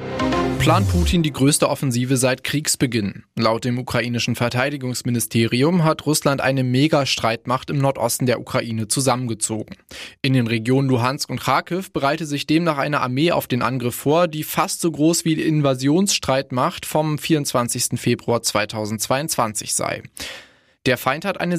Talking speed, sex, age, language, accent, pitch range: 140 wpm, male, 20-39, German, German, 120-155 Hz